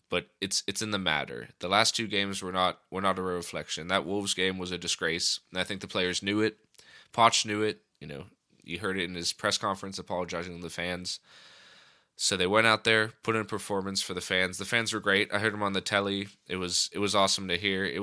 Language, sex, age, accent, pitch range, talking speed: English, male, 20-39, American, 90-110 Hz, 255 wpm